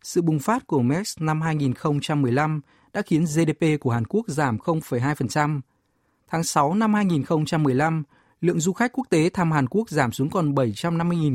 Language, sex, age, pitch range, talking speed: Vietnamese, male, 20-39, 135-175 Hz, 160 wpm